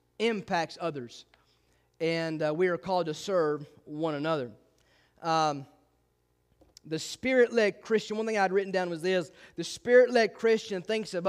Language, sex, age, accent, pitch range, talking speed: English, male, 30-49, American, 155-230 Hz, 145 wpm